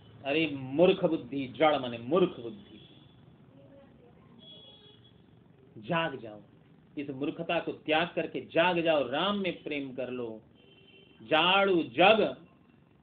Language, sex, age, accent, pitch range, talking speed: Hindi, male, 50-69, native, 145-185 Hz, 105 wpm